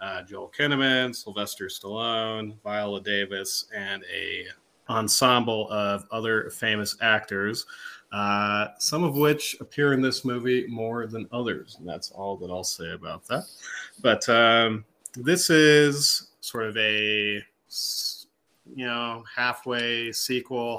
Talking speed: 125 wpm